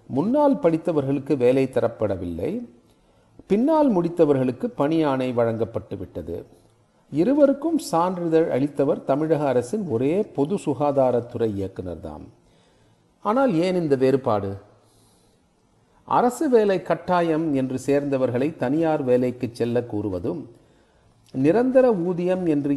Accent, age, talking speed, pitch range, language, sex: native, 40-59, 85 wpm, 120-165 Hz, Tamil, male